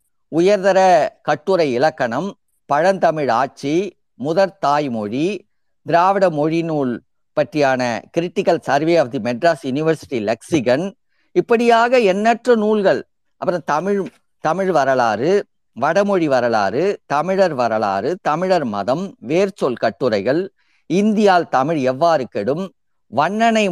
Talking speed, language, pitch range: 95 wpm, Tamil, 150-200 Hz